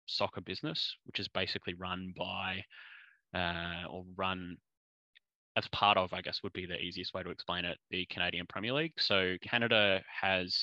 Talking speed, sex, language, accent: 170 wpm, male, English, Australian